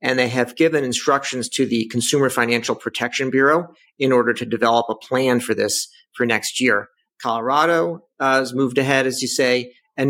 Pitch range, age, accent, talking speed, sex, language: 120-145 Hz, 40-59, American, 185 wpm, male, English